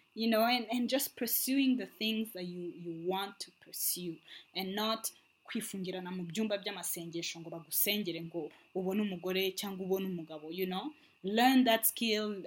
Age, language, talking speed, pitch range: 20-39, English, 110 wpm, 185-235 Hz